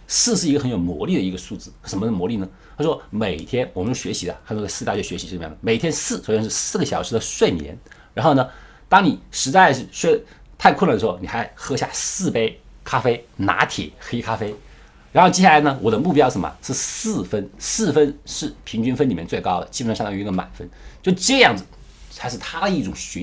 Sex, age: male, 50-69